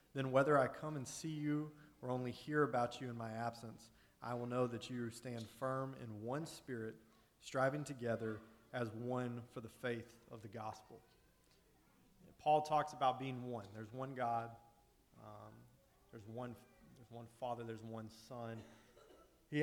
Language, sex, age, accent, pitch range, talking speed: English, male, 30-49, American, 115-135 Hz, 160 wpm